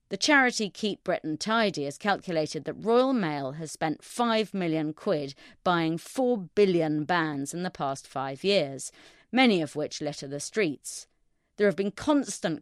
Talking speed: 160 wpm